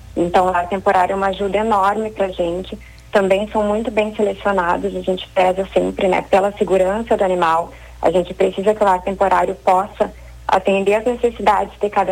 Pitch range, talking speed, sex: 185-210 Hz, 185 wpm, female